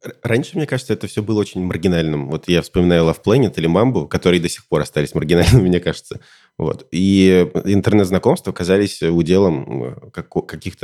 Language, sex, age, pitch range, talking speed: Russian, male, 20-39, 85-105 Hz, 160 wpm